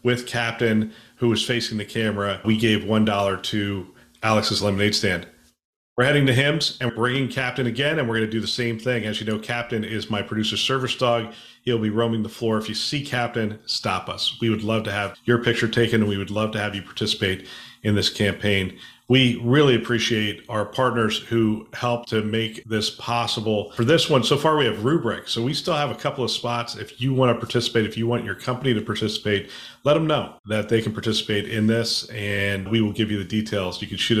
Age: 40-59